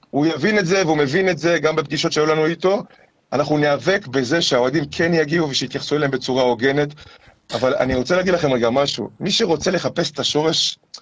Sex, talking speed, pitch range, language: male, 190 wpm, 140-195 Hz, Hebrew